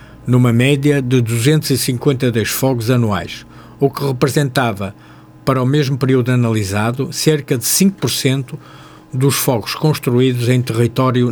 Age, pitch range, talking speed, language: 50-69, 120-145 Hz, 115 wpm, Portuguese